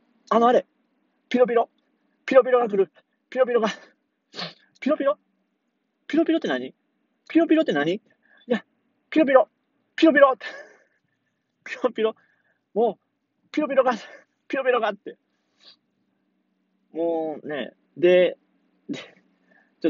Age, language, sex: 30-49, Japanese, male